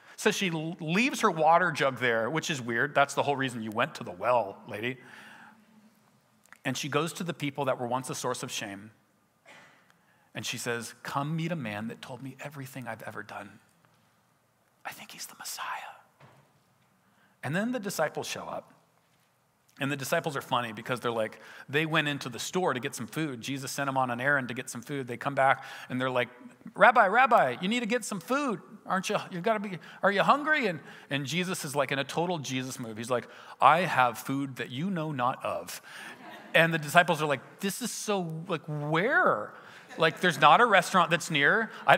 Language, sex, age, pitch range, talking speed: English, male, 40-59, 125-185 Hz, 210 wpm